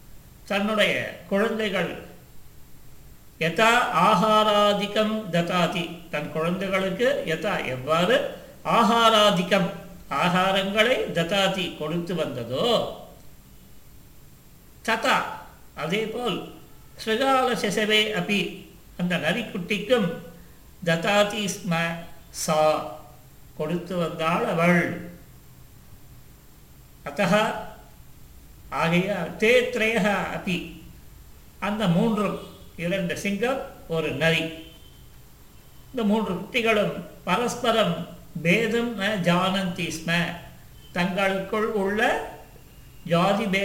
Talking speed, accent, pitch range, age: 50 wpm, native, 165-210 Hz, 50-69